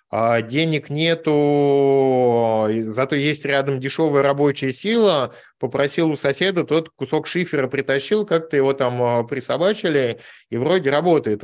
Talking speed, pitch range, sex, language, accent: 115 wpm, 125-150 Hz, male, Russian, native